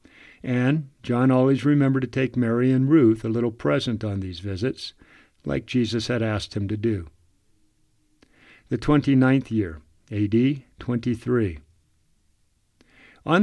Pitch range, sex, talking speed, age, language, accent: 110-135 Hz, male, 125 wpm, 50-69, English, American